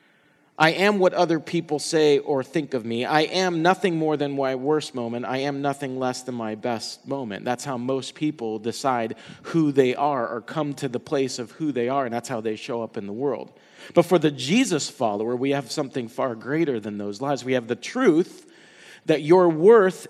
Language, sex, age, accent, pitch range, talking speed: English, male, 40-59, American, 115-150 Hz, 215 wpm